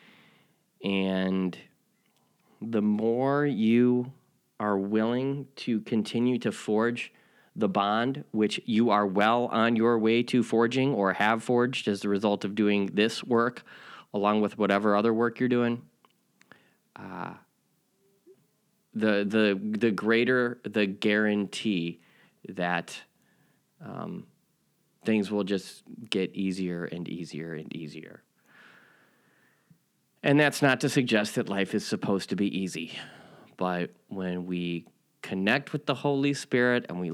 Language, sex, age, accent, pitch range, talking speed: English, male, 20-39, American, 95-120 Hz, 125 wpm